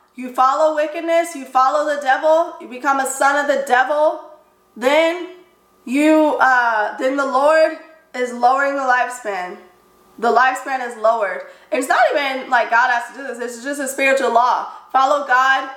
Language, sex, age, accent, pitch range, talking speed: English, female, 20-39, American, 215-270 Hz, 175 wpm